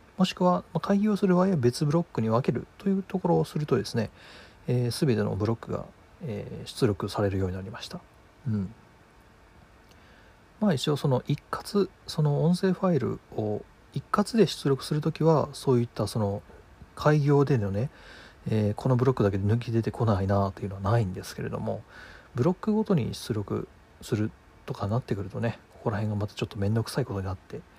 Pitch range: 100-150 Hz